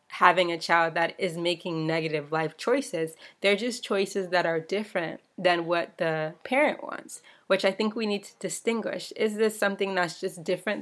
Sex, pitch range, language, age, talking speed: female, 170-190 Hz, English, 20-39, 185 wpm